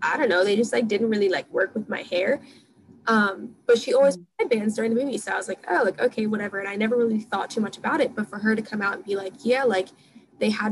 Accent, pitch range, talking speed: American, 200-235 Hz, 290 wpm